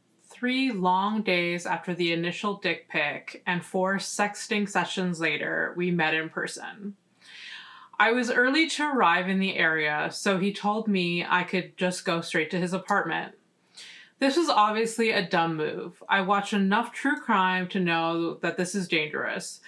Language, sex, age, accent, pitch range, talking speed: English, female, 20-39, American, 170-215 Hz, 165 wpm